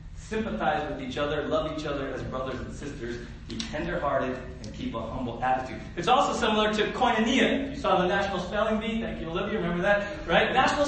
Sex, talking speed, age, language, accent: male, 200 wpm, 40-59, English, American